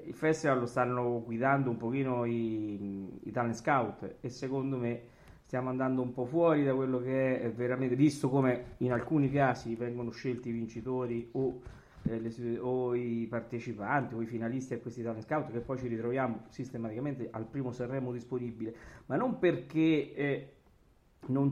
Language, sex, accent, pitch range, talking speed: Italian, male, native, 115-140 Hz, 165 wpm